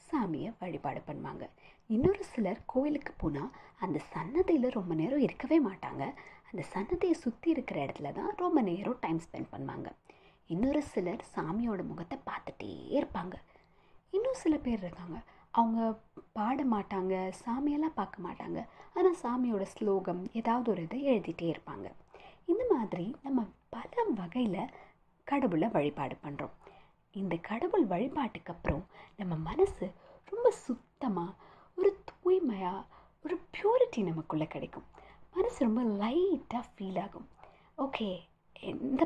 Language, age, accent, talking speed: Tamil, 30-49, native, 115 wpm